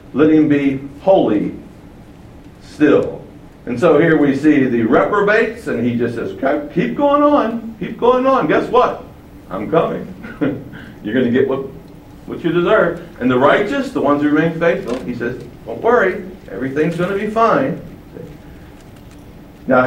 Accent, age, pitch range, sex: American, 60-79, 140-215 Hz, male